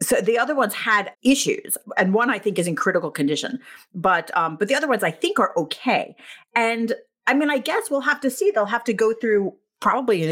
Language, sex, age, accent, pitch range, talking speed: English, female, 40-59, American, 160-230 Hz, 235 wpm